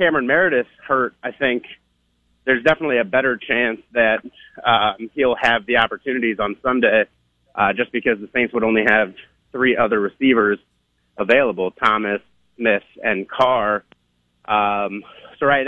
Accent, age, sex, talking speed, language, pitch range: American, 30-49, male, 140 wpm, English, 105-120 Hz